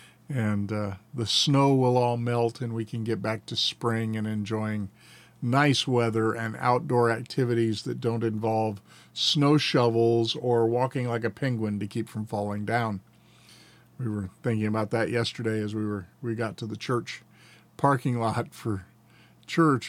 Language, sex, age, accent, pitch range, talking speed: English, male, 50-69, American, 110-130 Hz, 165 wpm